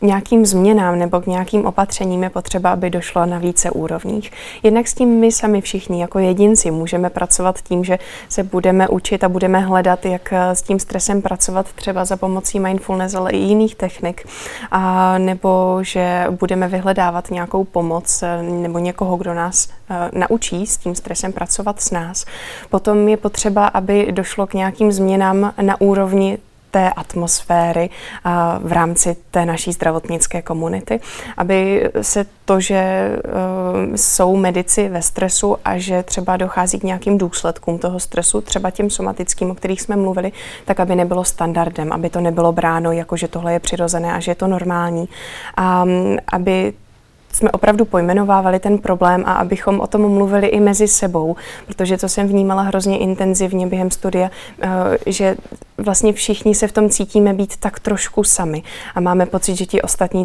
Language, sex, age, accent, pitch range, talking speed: Czech, female, 20-39, native, 175-195 Hz, 165 wpm